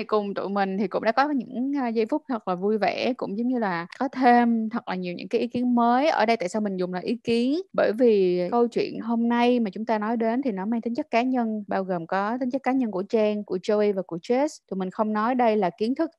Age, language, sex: 20-39, Vietnamese, female